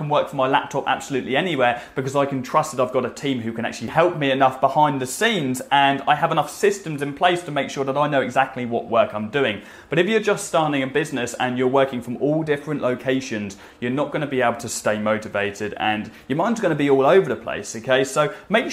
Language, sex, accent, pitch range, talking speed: English, male, British, 105-140 Hz, 250 wpm